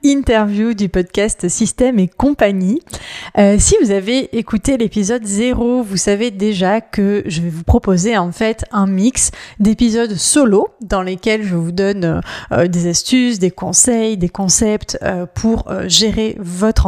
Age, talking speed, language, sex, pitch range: 20-39, 155 wpm, French, female, 195-245 Hz